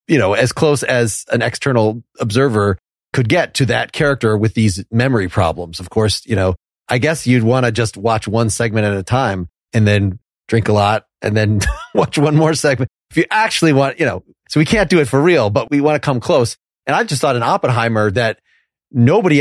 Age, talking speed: 30-49, 220 wpm